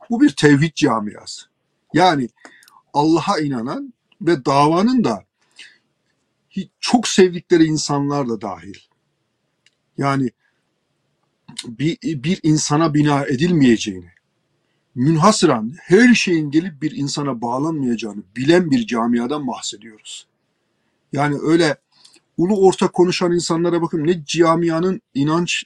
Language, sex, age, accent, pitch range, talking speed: Turkish, male, 50-69, native, 145-190 Hz, 100 wpm